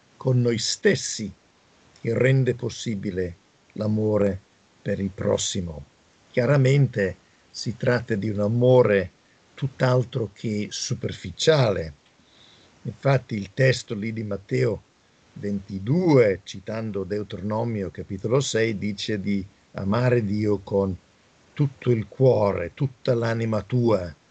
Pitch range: 105-130 Hz